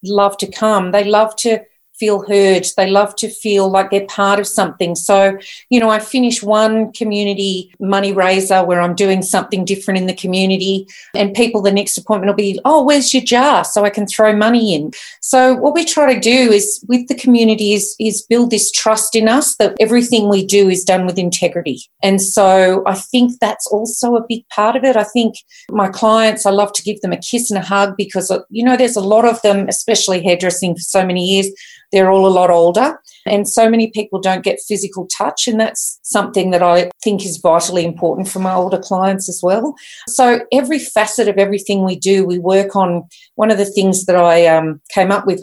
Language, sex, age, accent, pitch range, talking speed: English, female, 40-59, Australian, 185-220 Hz, 215 wpm